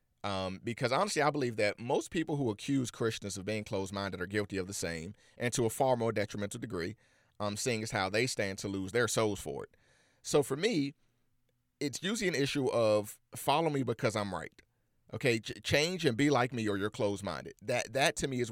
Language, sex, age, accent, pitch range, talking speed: English, male, 40-59, American, 110-135 Hz, 215 wpm